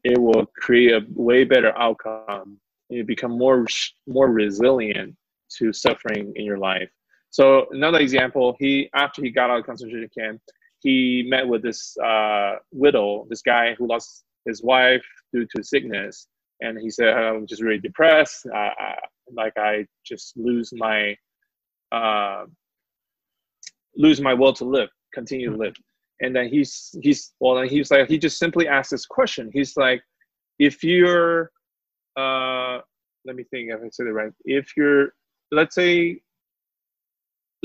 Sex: male